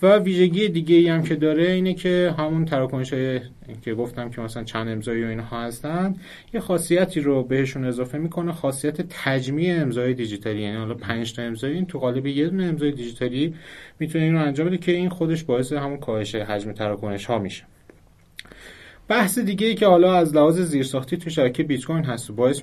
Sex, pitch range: male, 110-150 Hz